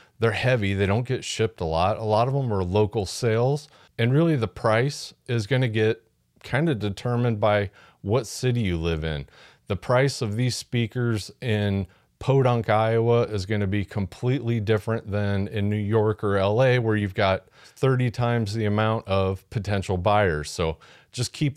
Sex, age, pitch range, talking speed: male, 30-49, 100-130 Hz, 175 wpm